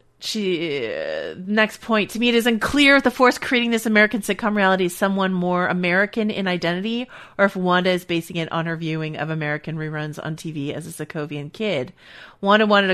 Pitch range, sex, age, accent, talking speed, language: 165-215 Hz, female, 30-49, American, 200 wpm, English